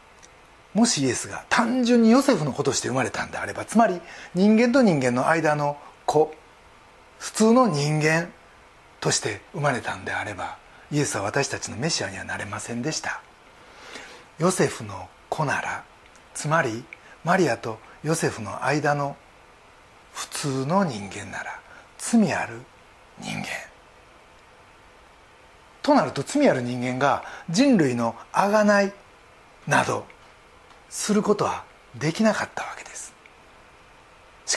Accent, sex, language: native, male, Japanese